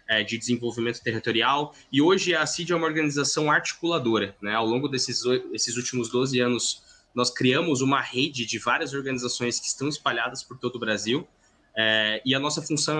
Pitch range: 120-150 Hz